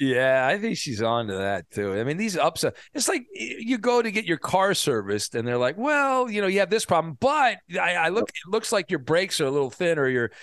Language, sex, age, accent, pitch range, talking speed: English, male, 40-59, American, 130-190 Hz, 255 wpm